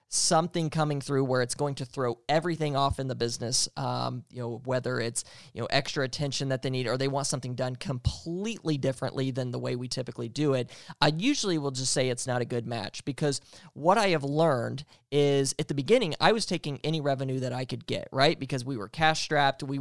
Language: English